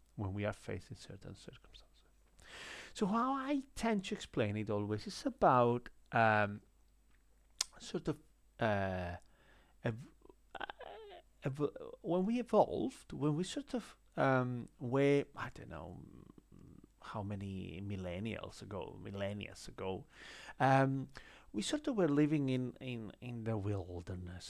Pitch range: 110-175 Hz